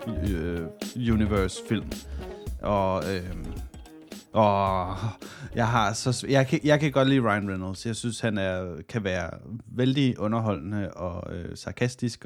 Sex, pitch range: male, 95-120 Hz